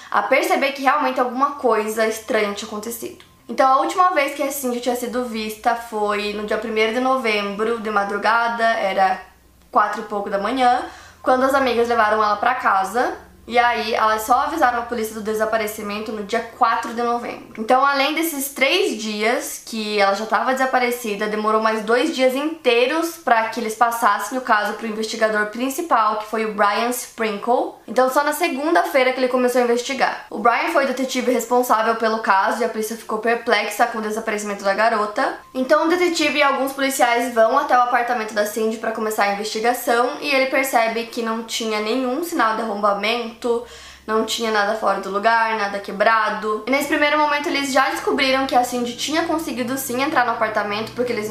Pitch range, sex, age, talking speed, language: 215-260 Hz, female, 20-39, 190 wpm, Portuguese